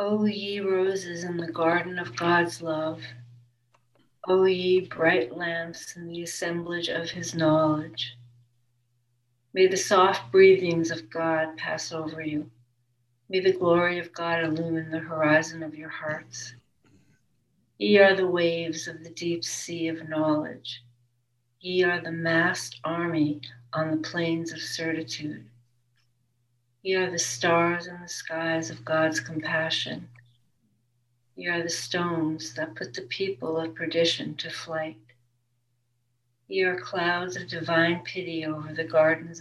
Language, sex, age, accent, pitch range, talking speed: English, female, 60-79, American, 125-170 Hz, 135 wpm